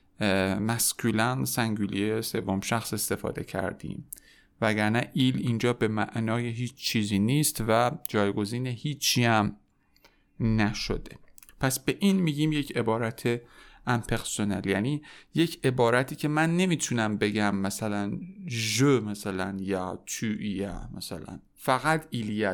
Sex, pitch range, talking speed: male, 105-125 Hz, 115 wpm